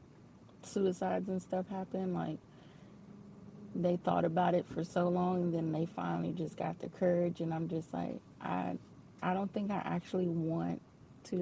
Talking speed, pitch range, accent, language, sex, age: 170 wpm, 160-185 Hz, American, English, female, 30-49